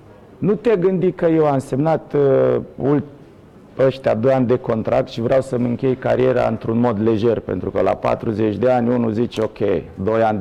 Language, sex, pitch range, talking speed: Romanian, male, 120-170 Hz, 185 wpm